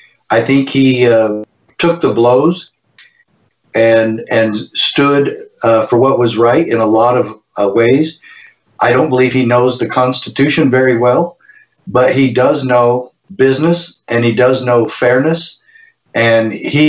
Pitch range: 115-145 Hz